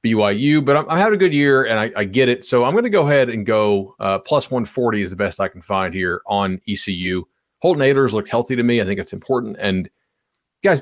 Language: English